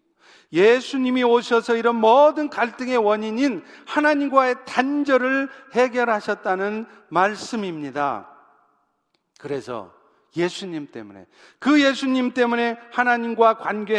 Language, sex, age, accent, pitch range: Korean, male, 40-59, native, 185-270 Hz